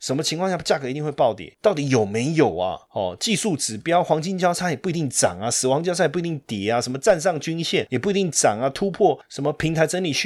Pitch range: 110-165 Hz